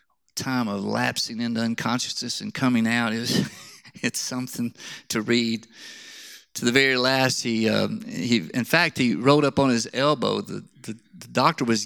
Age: 50-69